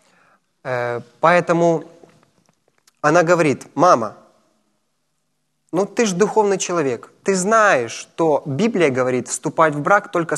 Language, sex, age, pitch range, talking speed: Ukrainian, male, 20-39, 130-170 Hz, 105 wpm